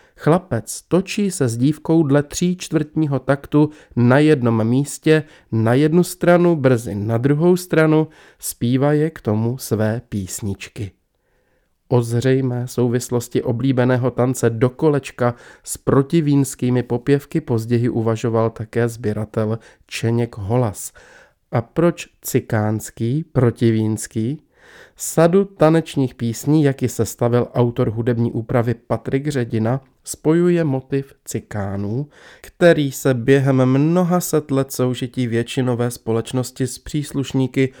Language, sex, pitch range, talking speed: Czech, male, 115-145 Hz, 110 wpm